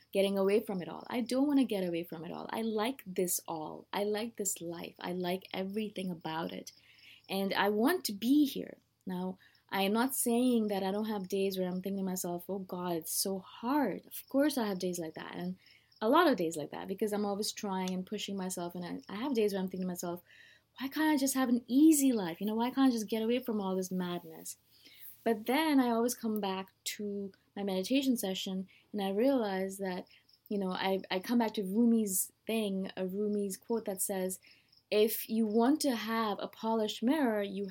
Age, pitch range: 20-39, 190-235 Hz